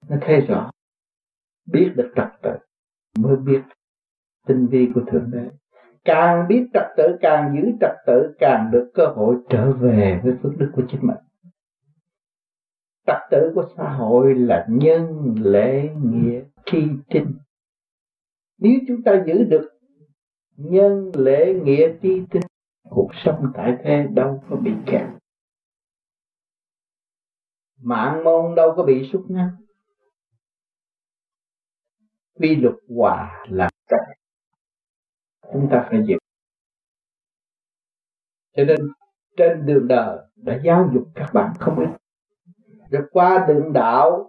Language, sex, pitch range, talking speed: Vietnamese, male, 125-165 Hz, 125 wpm